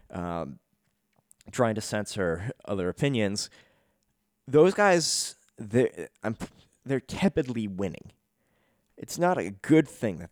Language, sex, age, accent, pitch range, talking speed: English, male, 20-39, American, 90-120 Hz, 100 wpm